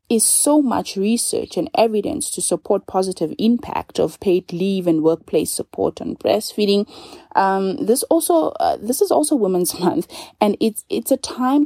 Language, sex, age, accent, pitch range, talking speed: English, female, 30-49, South African, 175-235 Hz, 165 wpm